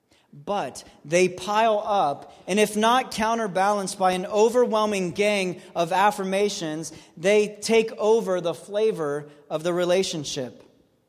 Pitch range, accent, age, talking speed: 185-225 Hz, American, 30-49, 120 wpm